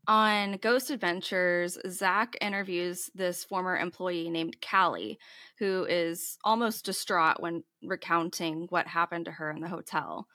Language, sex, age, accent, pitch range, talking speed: English, female, 20-39, American, 175-210 Hz, 135 wpm